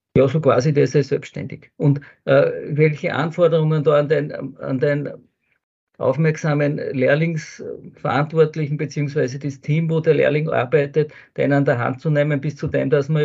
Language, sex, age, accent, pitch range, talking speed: German, male, 50-69, Austrian, 140-160 Hz, 165 wpm